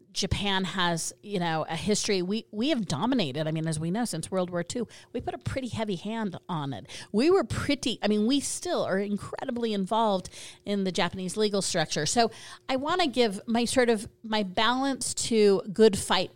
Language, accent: English, American